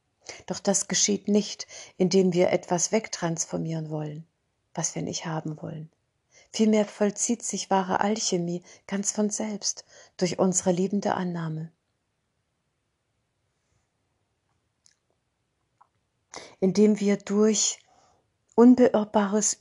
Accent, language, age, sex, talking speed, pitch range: German, German, 50-69, female, 90 wpm, 170-205 Hz